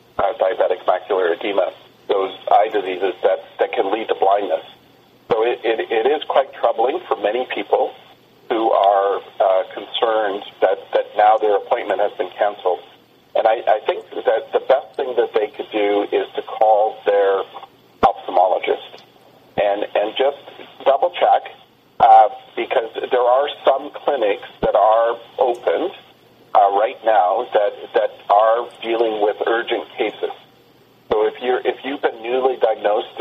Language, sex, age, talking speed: English, male, 40-59, 150 wpm